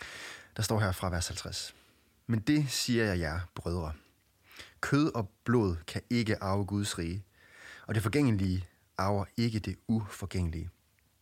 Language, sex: English, male